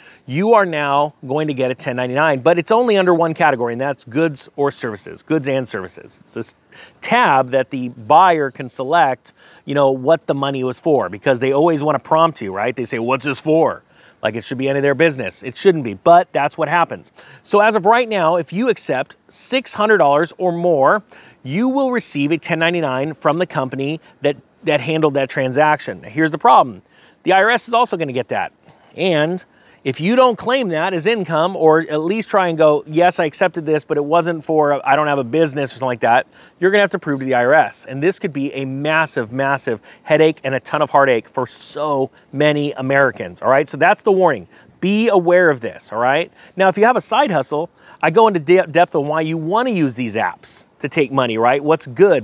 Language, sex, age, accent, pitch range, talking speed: English, male, 30-49, American, 135-175 Hz, 220 wpm